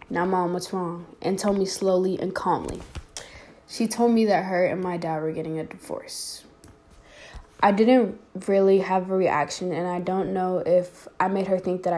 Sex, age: female, 10-29